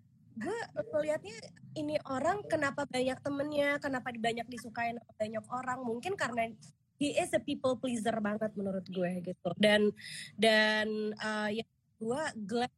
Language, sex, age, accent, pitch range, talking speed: Indonesian, female, 20-39, native, 215-260 Hz, 135 wpm